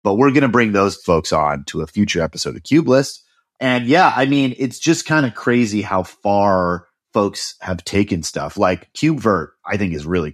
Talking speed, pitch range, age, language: 205 wpm, 85-120 Hz, 30-49, English